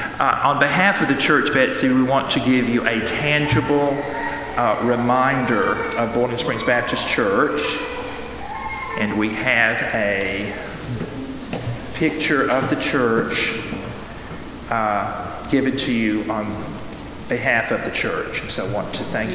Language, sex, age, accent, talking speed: English, male, 40-59, American, 135 wpm